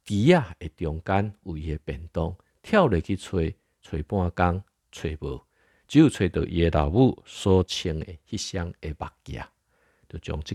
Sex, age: male, 50-69